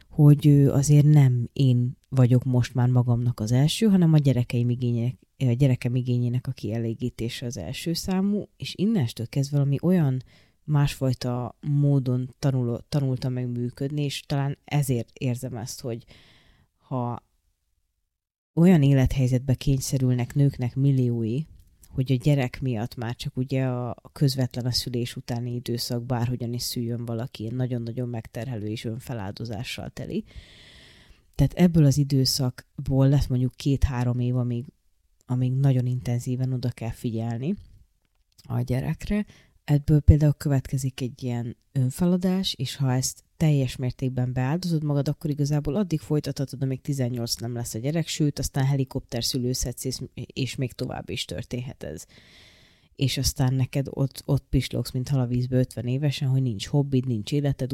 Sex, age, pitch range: female, 30-49, 120-140 Hz